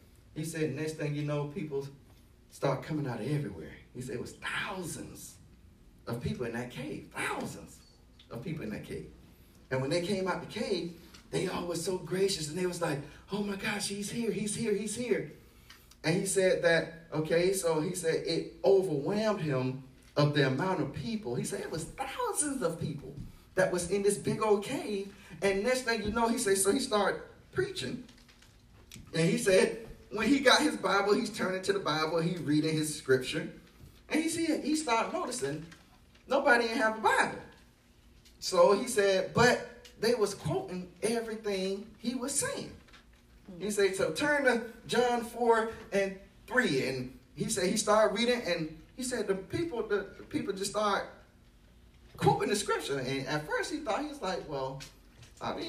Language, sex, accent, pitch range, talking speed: English, male, American, 155-225 Hz, 180 wpm